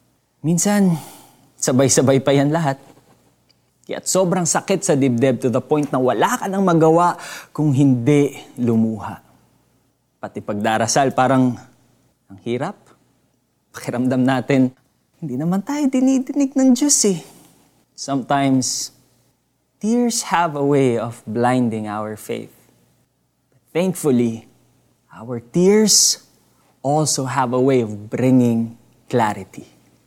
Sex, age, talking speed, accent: male, 20-39, 110 wpm, native